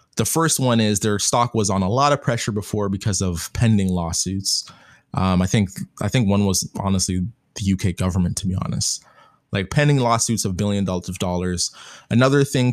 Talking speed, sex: 195 wpm, male